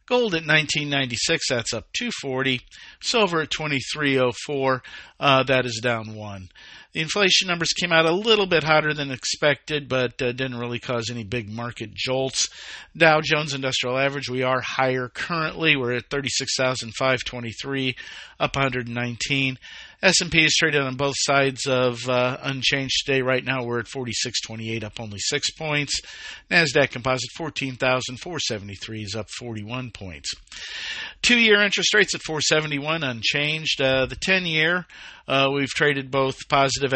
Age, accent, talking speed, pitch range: 50-69, American, 140 wpm, 120-150 Hz